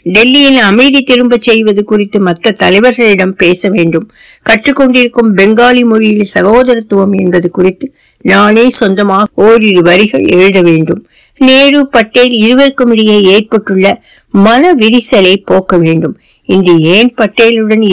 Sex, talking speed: female, 110 wpm